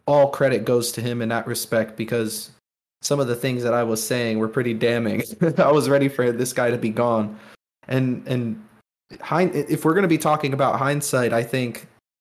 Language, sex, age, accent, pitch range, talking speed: English, male, 20-39, American, 110-135 Hz, 205 wpm